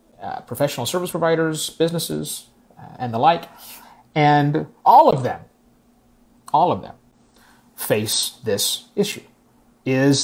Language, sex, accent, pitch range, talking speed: English, male, American, 125-165 Hz, 115 wpm